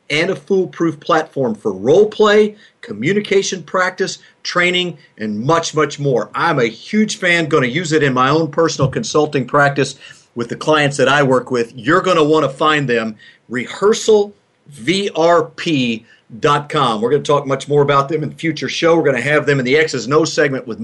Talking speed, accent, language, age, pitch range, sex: 190 wpm, American, English, 40-59, 135-165 Hz, male